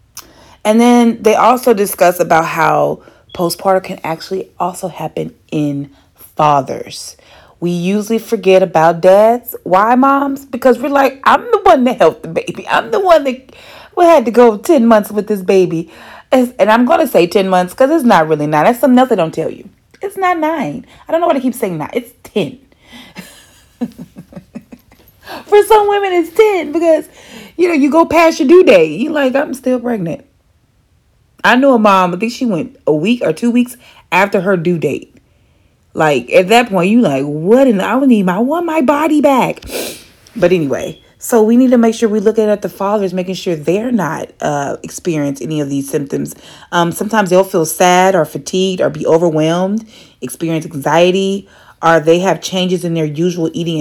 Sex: female